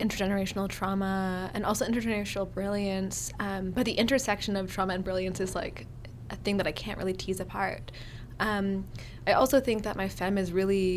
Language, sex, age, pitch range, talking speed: English, female, 20-39, 175-200 Hz, 180 wpm